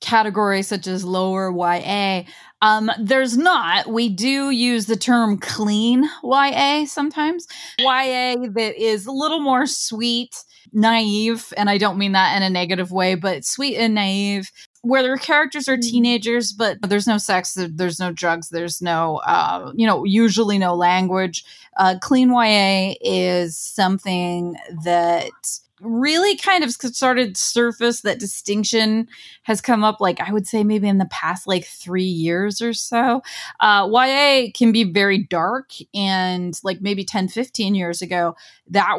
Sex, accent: female, American